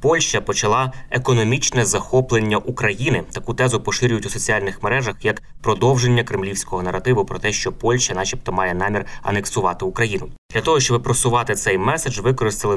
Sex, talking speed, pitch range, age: male, 145 wpm, 100-120 Hz, 20-39